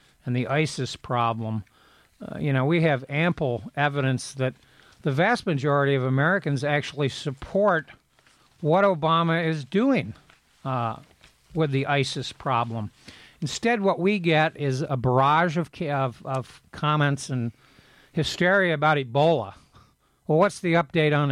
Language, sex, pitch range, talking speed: English, male, 130-160 Hz, 135 wpm